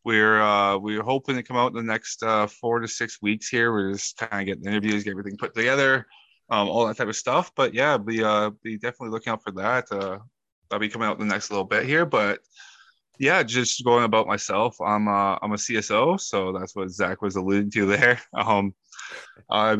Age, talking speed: 20-39, 225 wpm